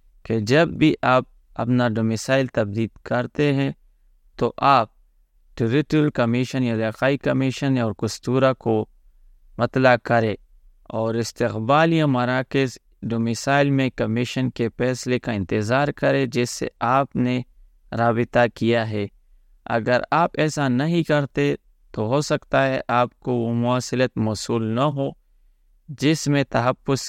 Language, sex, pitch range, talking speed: Urdu, male, 100-130 Hz, 130 wpm